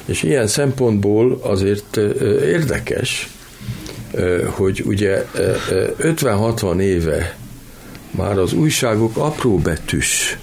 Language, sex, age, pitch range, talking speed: Hungarian, male, 60-79, 95-115 Hz, 75 wpm